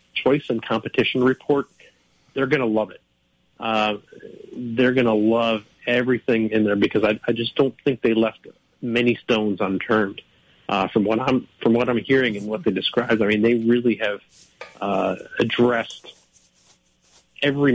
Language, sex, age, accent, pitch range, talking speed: English, male, 40-59, American, 105-120 Hz, 155 wpm